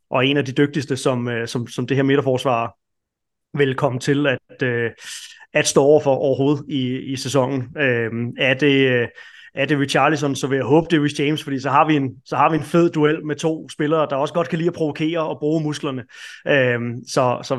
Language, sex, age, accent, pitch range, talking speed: Danish, male, 30-49, native, 130-155 Hz, 220 wpm